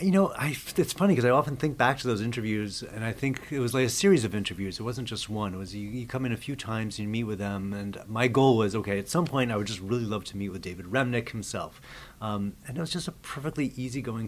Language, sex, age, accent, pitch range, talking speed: English, male, 40-59, American, 95-120 Hz, 280 wpm